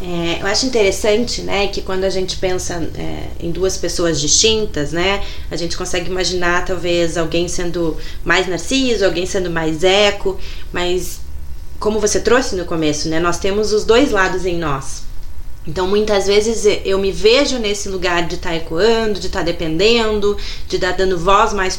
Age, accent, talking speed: 20-39, Brazilian, 180 wpm